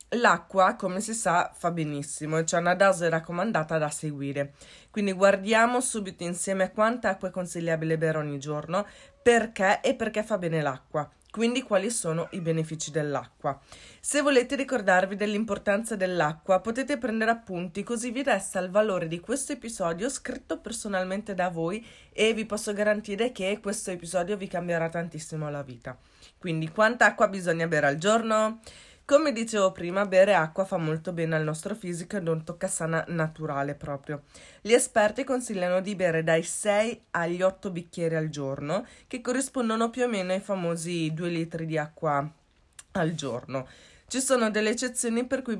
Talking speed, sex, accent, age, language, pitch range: 160 wpm, female, native, 20-39, Italian, 165-215 Hz